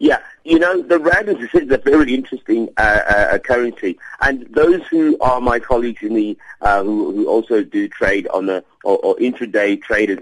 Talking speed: 195 wpm